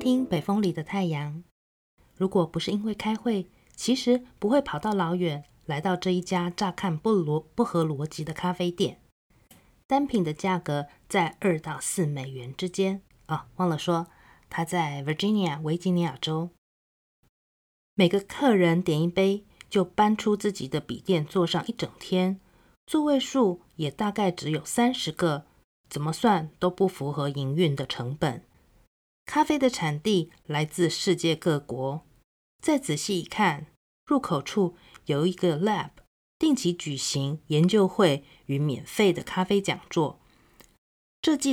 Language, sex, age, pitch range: Chinese, female, 30-49, 150-200 Hz